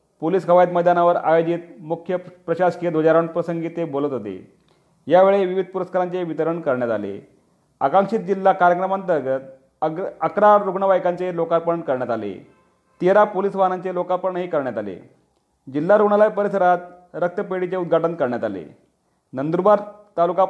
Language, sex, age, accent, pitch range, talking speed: Marathi, male, 40-59, native, 165-195 Hz, 115 wpm